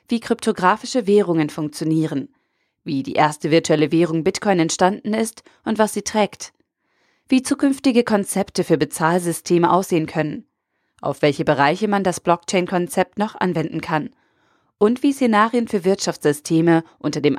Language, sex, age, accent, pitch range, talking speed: German, female, 30-49, German, 165-210 Hz, 135 wpm